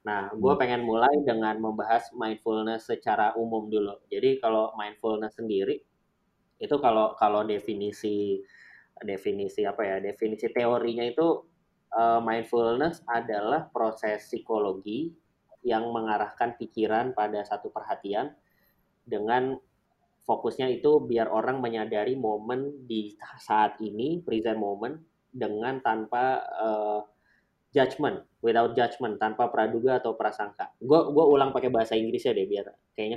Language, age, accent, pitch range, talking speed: Indonesian, 20-39, native, 110-155 Hz, 120 wpm